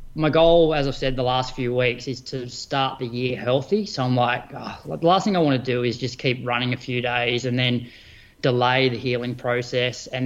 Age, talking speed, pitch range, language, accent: 20-39, 235 wpm, 125-145 Hz, English, Australian